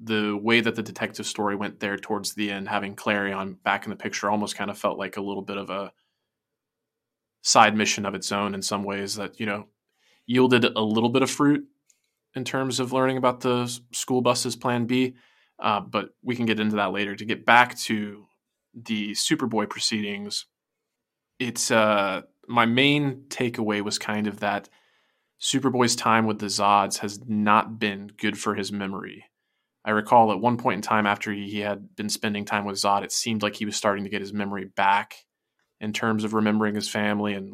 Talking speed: 195 wpm